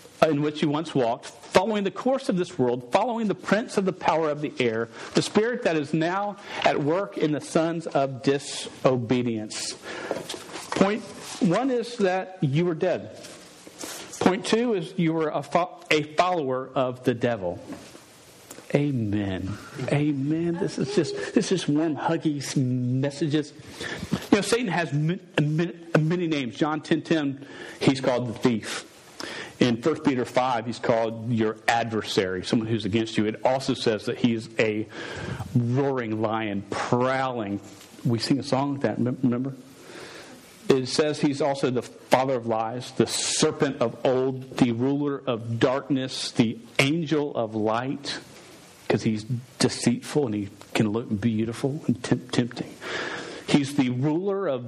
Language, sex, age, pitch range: English, male, 50-69, 120-160 Hz